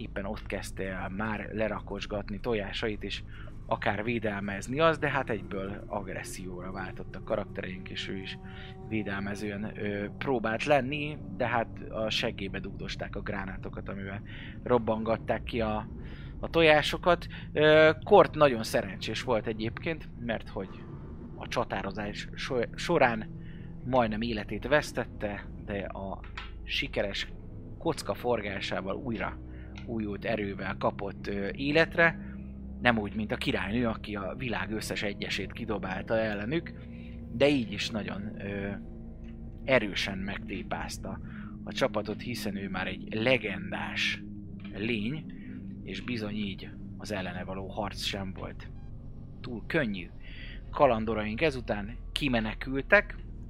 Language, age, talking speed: Hungarian, 30-49, 115 wpm